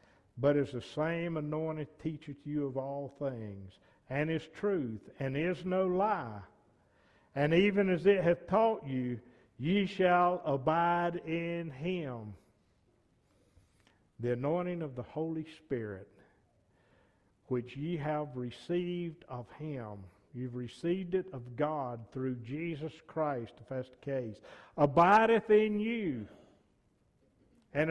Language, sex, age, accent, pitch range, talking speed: English, male, 50-69, American, 125-190 Hz, 125 wpm